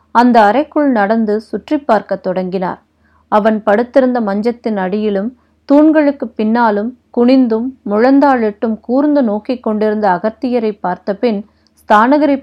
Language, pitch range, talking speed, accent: Tamil, 205-250 Hz, 95 wpm, native